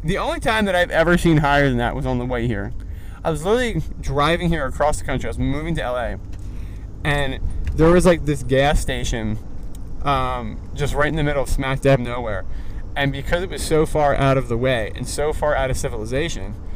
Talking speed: 220 wpm